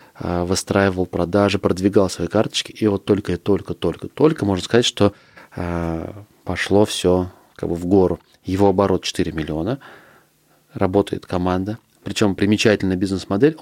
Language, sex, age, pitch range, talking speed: Russian, male, 30-49, 90-110 Hz, 135 wpm